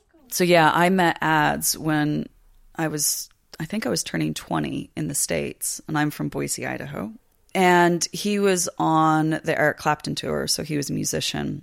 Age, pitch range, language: 30-49, 135-165 Hz, English